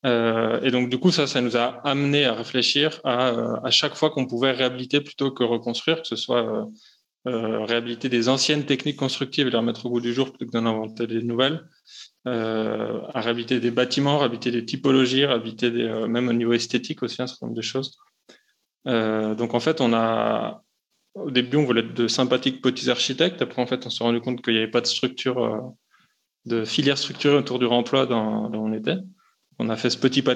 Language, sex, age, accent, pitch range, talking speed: French, male, 20-39, French, 120-140 Hz, 225 wpm